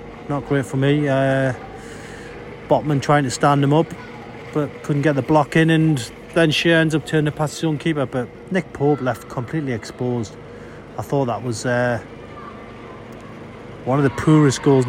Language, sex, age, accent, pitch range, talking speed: English, male, 30-49, British, 130-155 Hz, 175 wpm